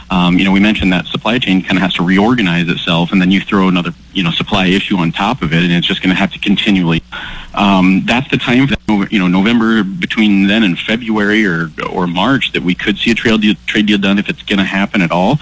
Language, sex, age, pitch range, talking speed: English, male, 30-49, 95-105 Hz, 265 wpm